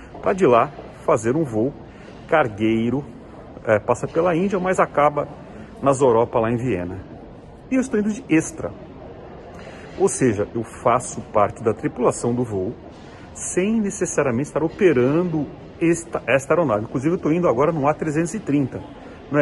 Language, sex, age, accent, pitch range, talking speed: Portuguese, male, 40-59, Brazilian, 115-175 Hz, 150 wpm